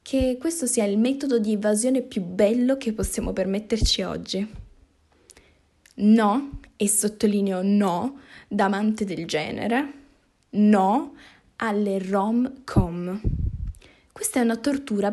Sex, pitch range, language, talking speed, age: female, 210-250 Hz, Italian, 110 wpm, 10-29